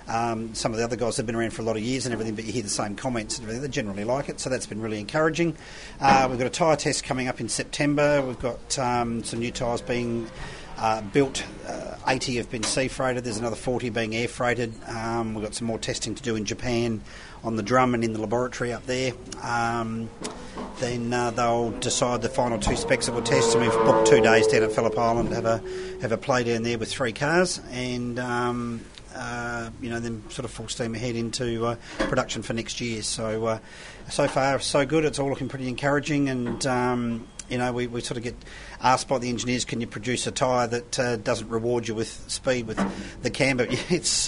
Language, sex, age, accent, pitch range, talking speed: English, male, 40-59, Australian, 110-125 Hz, 230 wpm